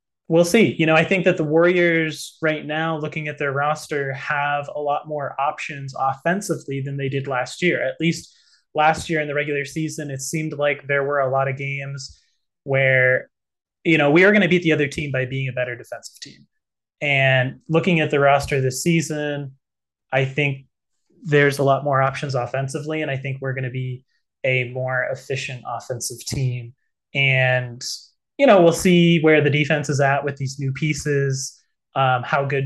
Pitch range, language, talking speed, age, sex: 130-150 Hz, English, 190 wpm, 20-39, male